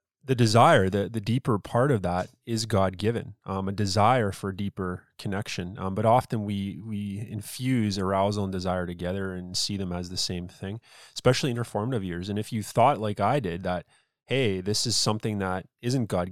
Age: 20-39